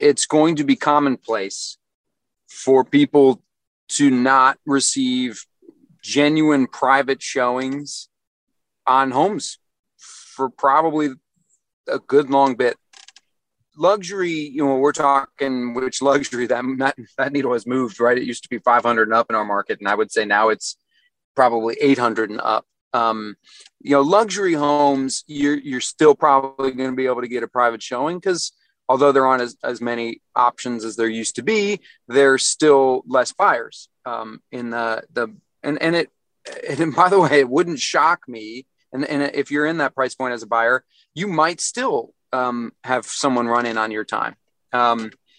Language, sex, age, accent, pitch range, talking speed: English, male, 30-49, American, 120-150 Hz, 170 wpm